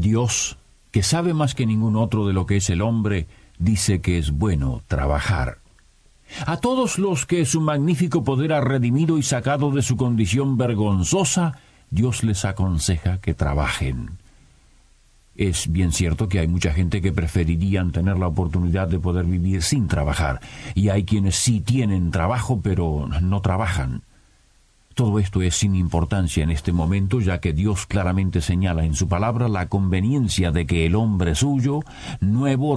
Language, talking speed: Spanish, 160 wpm